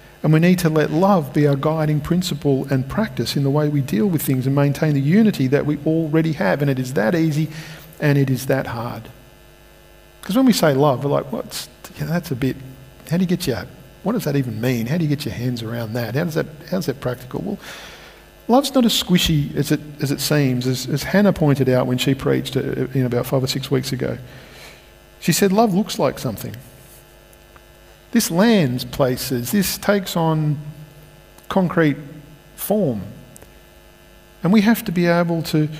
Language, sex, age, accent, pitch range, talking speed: English, male, 50-69, Australian, 135-180 Hz, 200 wpm